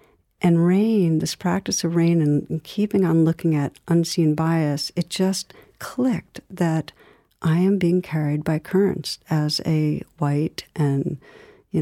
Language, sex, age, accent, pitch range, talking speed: English, female, 60-79, American, 155-175 Hz, 140 wpm